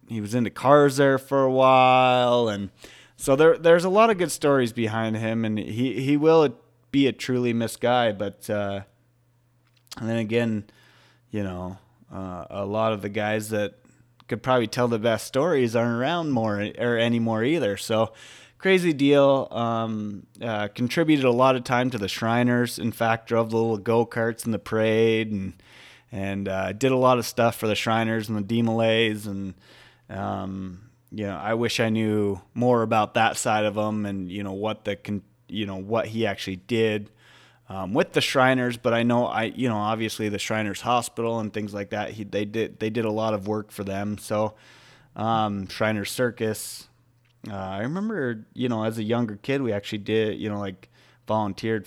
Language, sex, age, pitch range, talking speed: English, male, 20-39, 105-120 Hz, 190 wpm